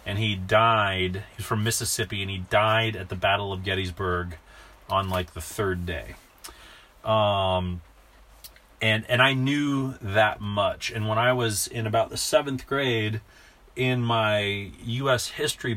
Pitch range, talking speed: 95-115 Hz, 150 wpm